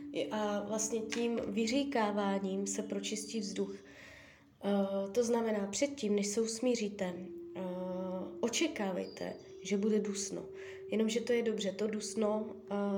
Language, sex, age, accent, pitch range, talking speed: Czech, female, 20-39, native, 195-225 Hz, 105 wpm